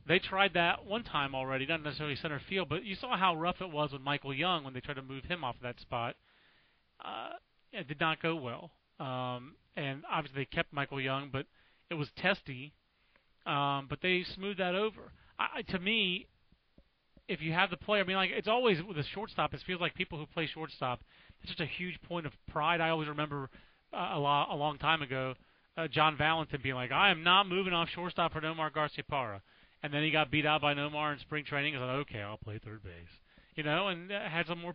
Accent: American